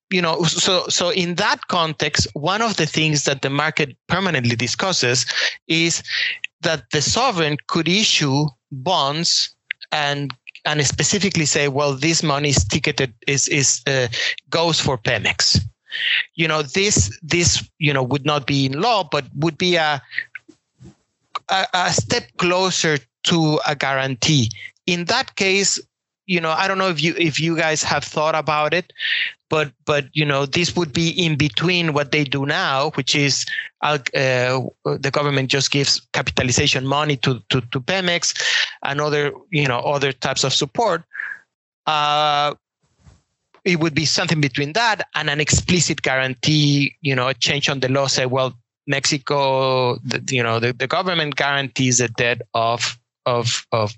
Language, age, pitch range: French, 30-49, 135-165 Hz